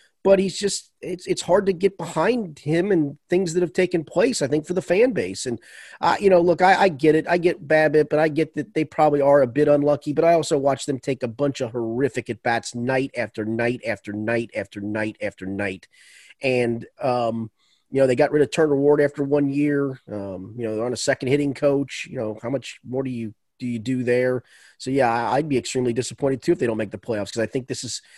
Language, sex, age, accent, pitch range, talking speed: English, male, 30-49, American, 125-165 Hz, 245 wpm